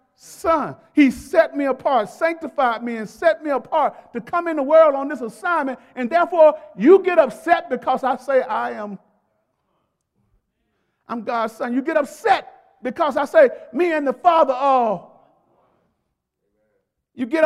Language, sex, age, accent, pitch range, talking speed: English, male, 50-69, American, 230-330 Hz, 155 wpm